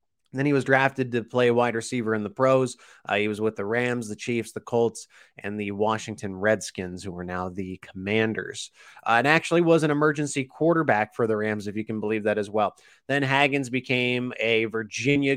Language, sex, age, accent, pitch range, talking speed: English, male, 20-39, American, 110-140 Hz, 205 wpm